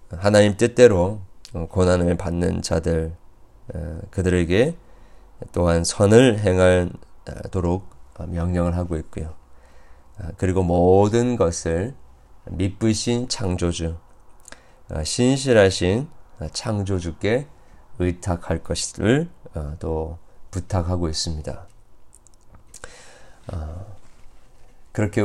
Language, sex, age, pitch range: Korean, male, 40-59, 85-100 Hz